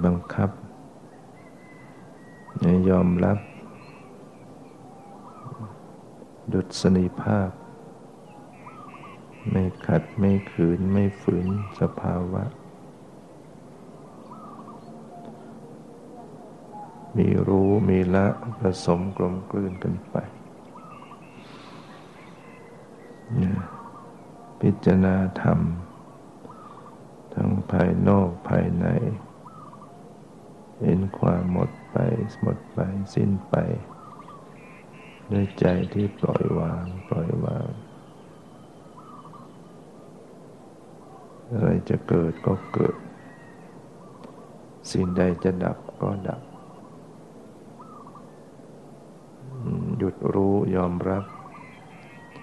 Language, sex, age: Thai, male, 60-79